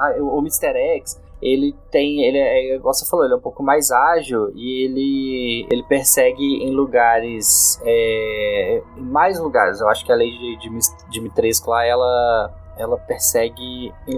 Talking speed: 155 wpm